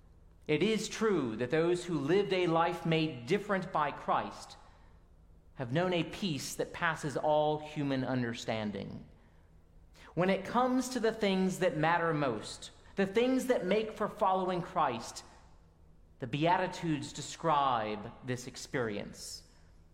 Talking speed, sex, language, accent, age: 130 wpm, male, English, American, 40-59